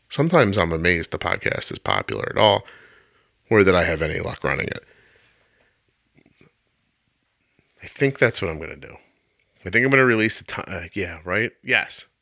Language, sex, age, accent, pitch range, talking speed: English, male, 30-49, American, 100-145 Hz, 175 wpm